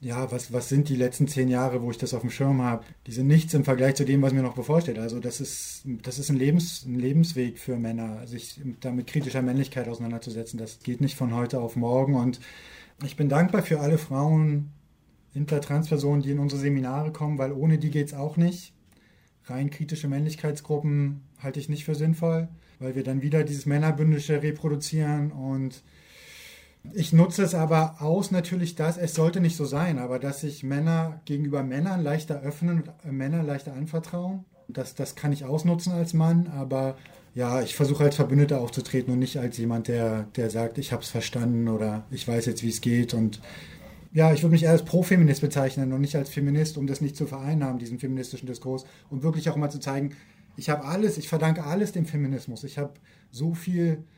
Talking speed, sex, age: 200 wpm, male, 20-39